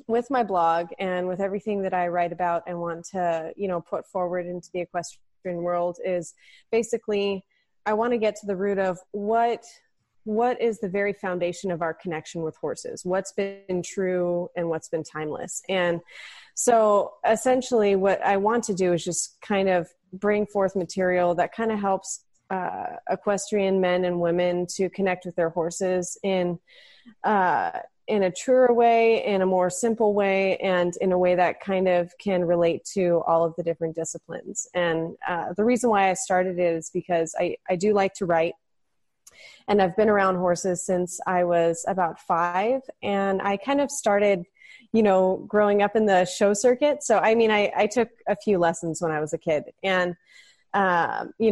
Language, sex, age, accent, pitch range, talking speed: English, female, 30-49, American, 175-210 Hz, 185 wpm